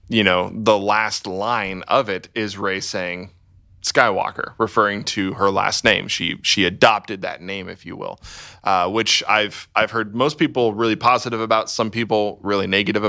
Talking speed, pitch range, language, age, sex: 175 wpm, 100-115 Hz, English, 20-39, male